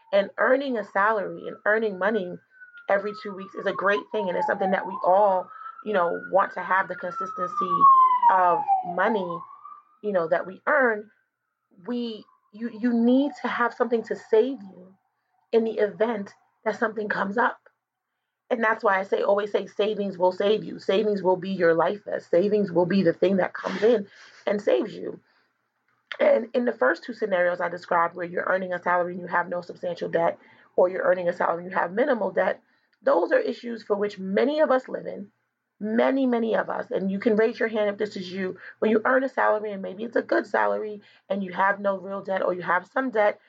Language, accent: English, American